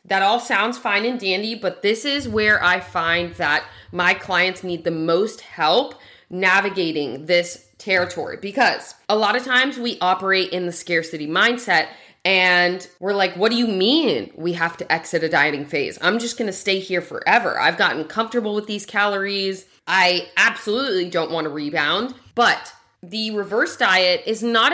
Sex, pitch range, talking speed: female, 180-235 Hz, 175 wpm